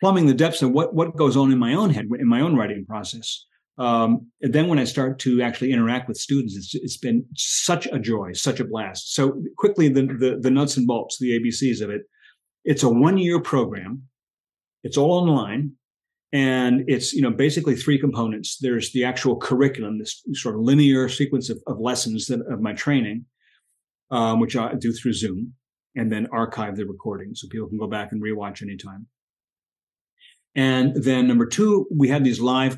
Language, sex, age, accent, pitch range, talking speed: English, male, 40-59, American, 115-140 Hz, 195 wpm